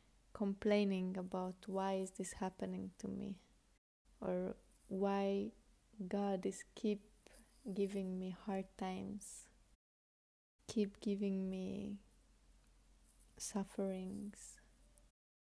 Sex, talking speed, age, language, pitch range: female, 80 wpm, 20-39, English, 190-205 Hz